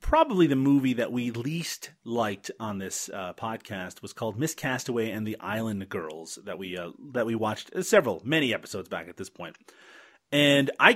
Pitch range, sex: 115-160 Hz, male